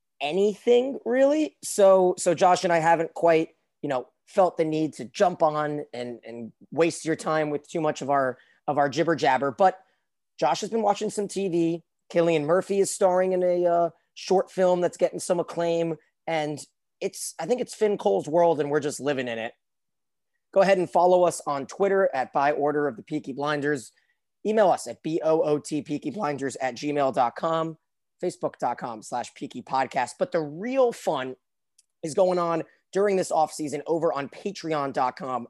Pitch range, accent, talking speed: 145-185 Hz, American, 175 wpm